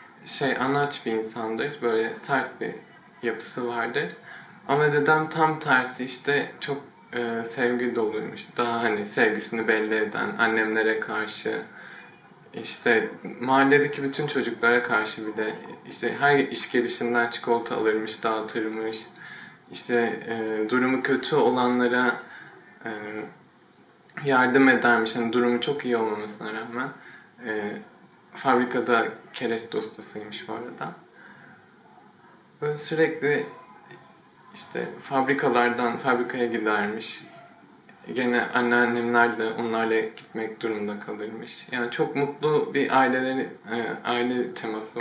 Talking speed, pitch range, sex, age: 105 wpm, 110-130 Hz, male, 20-39